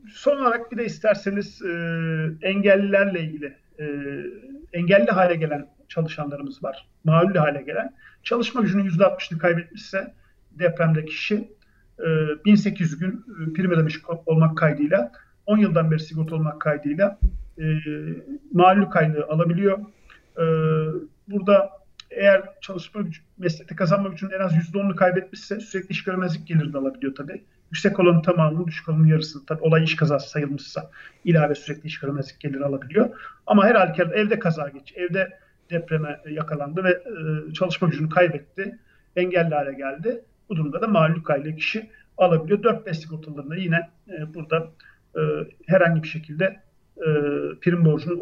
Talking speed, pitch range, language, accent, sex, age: 135 wpm, 155-200 Hz, Turkish, native, male, 50-69